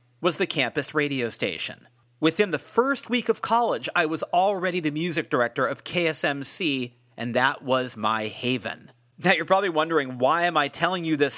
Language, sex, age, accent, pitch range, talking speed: English, male, 40-59, American, 135-190 Hz, 180 wpm